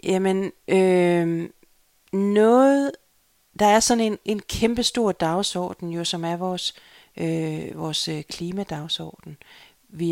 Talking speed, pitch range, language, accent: 105 wpm, 160-205 Hz, Danish, native